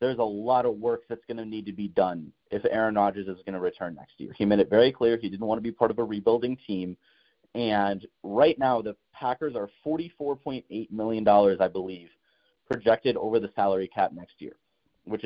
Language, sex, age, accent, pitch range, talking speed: English, male, 30-49, American, 100-125 Hz, 210 wpm